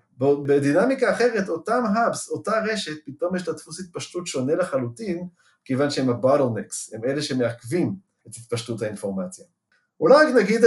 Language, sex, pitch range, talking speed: Hebrew, male, 135-220 Hz, 140 wpm